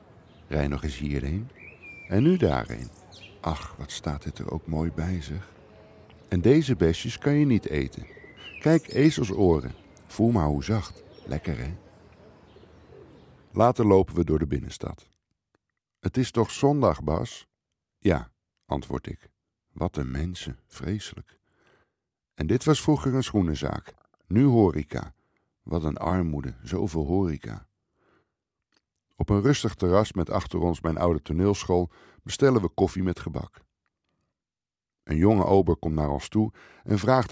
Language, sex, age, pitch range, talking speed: Dutch, male, 60-79, 80-110 Hz, 140 wpm